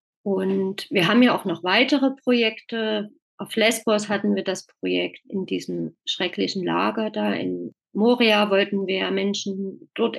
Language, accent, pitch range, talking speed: German, German, 190-225 Hz, 145 wpm